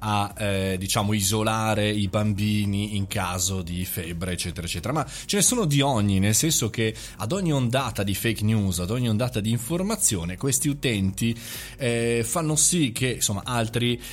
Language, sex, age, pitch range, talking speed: Italian, male, 20-39, 100-130 Hz, 170 wpm